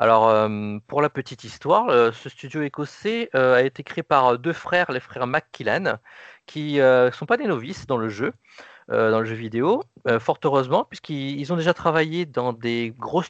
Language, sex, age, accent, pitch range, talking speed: French, male, 40-59, French, 115-160 Hz, 205 wpm